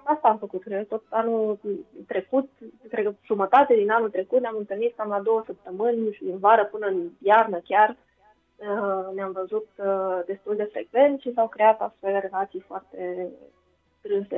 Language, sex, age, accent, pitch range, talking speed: Romanian, female, 20-39, native, 190-230 Hz, 150 wpm